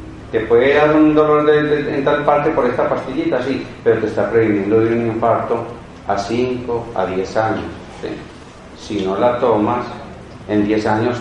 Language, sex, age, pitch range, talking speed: Spanish, male, 40-59, 105-135 Hz, 185 wpm